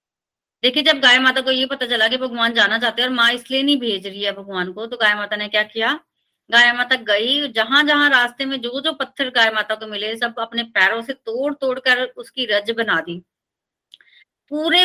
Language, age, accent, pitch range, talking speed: Hindi, 30-49, native, 205-260 Hz, 220 wpm